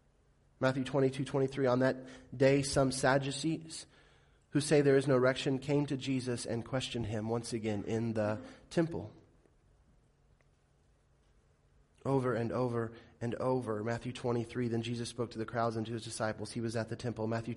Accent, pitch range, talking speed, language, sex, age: American, 110-170 Hz, 165 wpm, English, male, 30-49